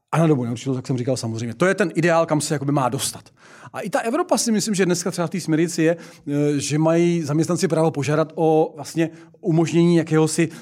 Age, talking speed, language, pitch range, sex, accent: 40-59, 205 wpm, Czech, 145-195 Hz, male, native